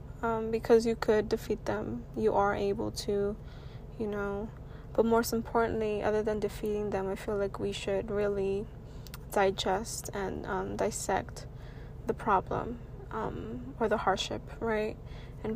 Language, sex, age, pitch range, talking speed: English, female, 20-39, 190-225 Hz, 145 wpm